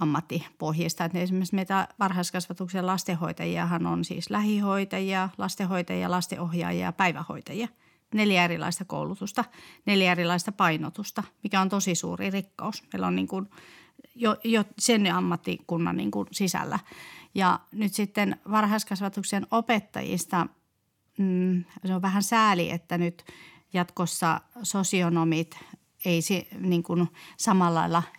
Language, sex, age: Finnish, female, 40-59